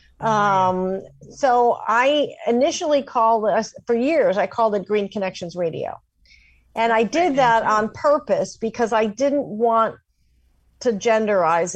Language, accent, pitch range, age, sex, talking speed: English, American, 175-230 Hz, 50-69, female, 135 wpm